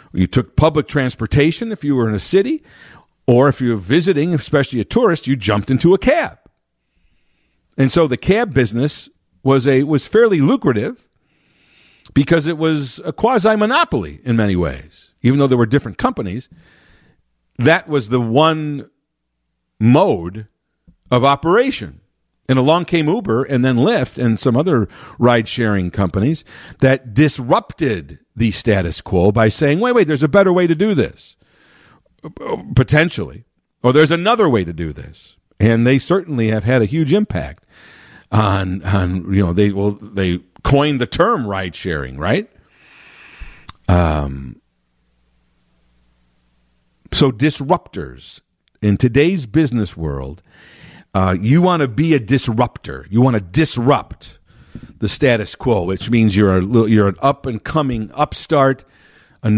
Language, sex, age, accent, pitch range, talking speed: English, male, 50-69, American, 95-150 Hz, 140 wpm